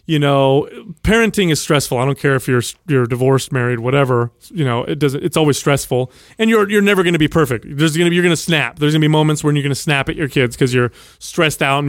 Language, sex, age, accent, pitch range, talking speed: English, male, 30-49, American, 130-155 Hz, 275 wpm